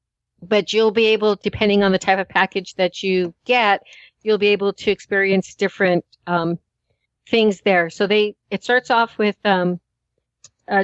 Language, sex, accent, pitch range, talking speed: English, female, American, 200-225 Hz, 165 wpm